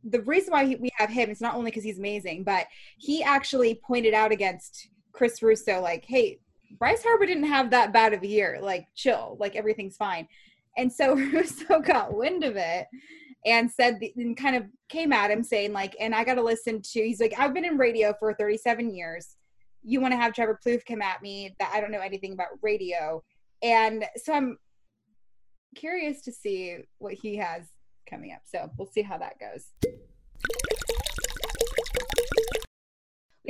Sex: female